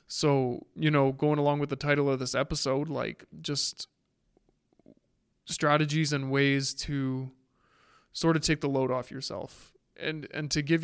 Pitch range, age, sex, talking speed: 135-155 Hz, 20-39, male, 155 wpm